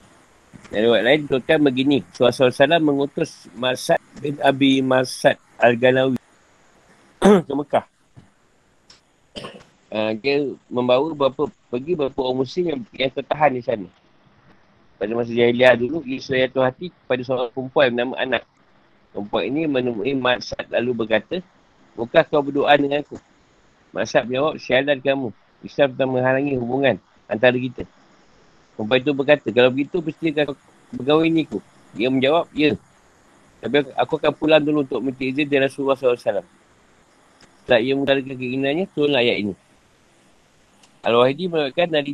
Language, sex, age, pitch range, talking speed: Malay, male, 50-69, 125-150 Hz, 135 wpm